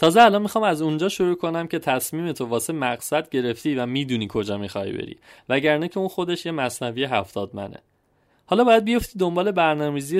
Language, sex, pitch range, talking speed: Persian, male, 130-170 Hz, 180 wpm